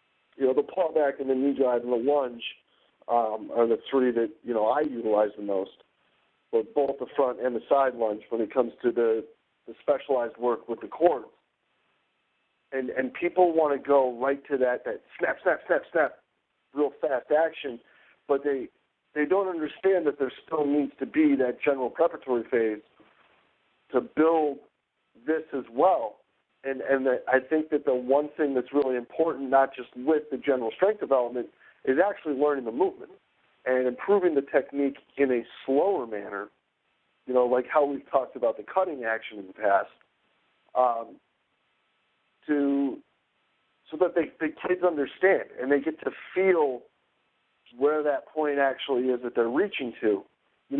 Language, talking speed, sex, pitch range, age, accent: English, 175 wpm, male, 125-150 Hz, 50-69, American